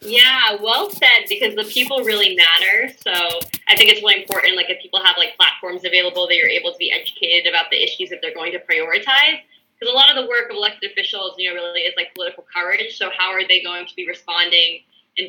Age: 20-39